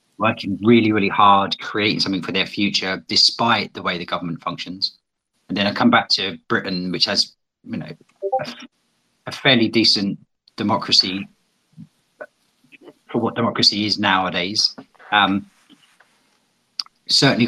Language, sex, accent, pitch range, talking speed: English, male, British, 95-115 Hz, 125 wpm